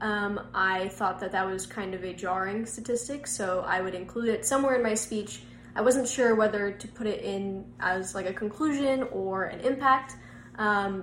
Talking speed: 195 wpm